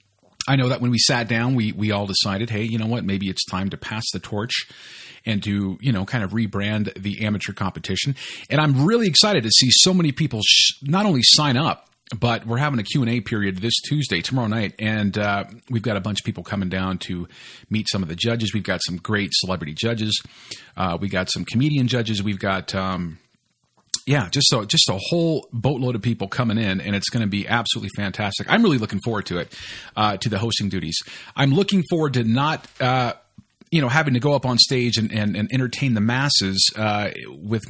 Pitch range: 100-130 Hz